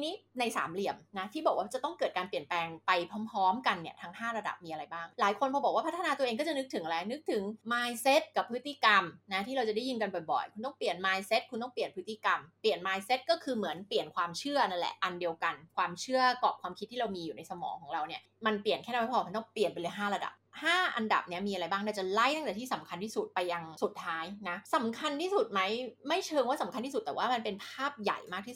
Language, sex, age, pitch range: Thai, female, 20-39, 190-265 Hz